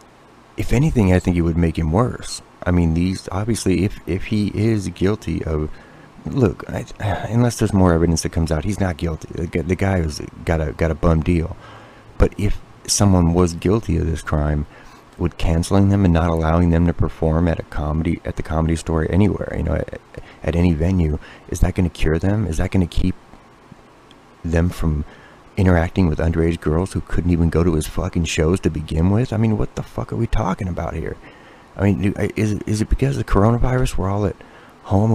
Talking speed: 210 wpm